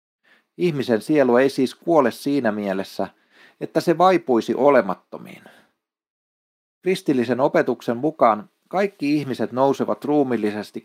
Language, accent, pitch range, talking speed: Finnish, native, 110-145 Hz, 100 wpm